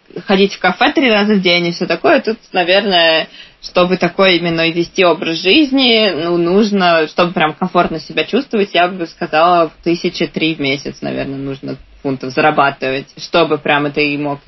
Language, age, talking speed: Russian, 20-39, 165 wpm